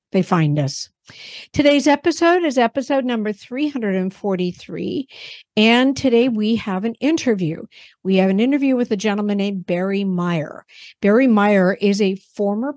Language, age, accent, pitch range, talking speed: English, 60-79, American, 195-250 Hz, 135 wpm